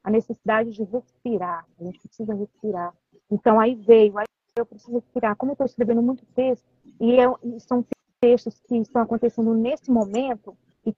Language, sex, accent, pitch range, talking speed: Portuguese, female, Brazilian, 210-250 Hz, 170 wpm